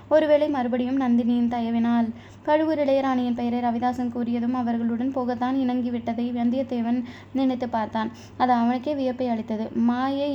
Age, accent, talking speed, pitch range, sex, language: 20-39, native, 115 wpm, 235-265 Hz, female, Tamil